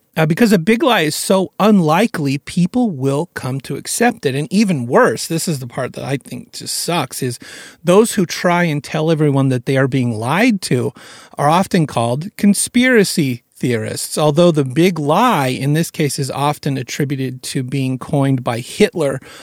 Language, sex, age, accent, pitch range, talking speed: English, male, 40-59, American, 135-185 Hz, 180 wpm